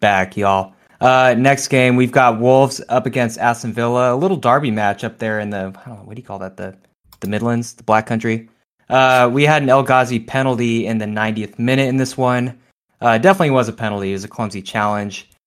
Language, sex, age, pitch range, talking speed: English, male, 20-39, 100-125 Hz, 225 wpm